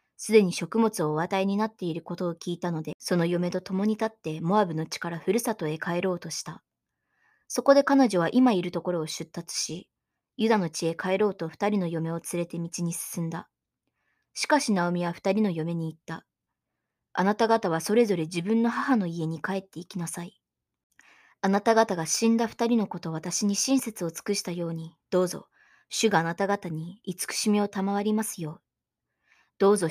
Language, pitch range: Japanese, 170-215 Hz